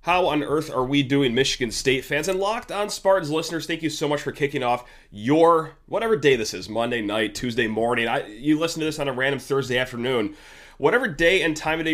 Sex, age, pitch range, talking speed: male, 30-49, 130-175 Hz, 230 wpm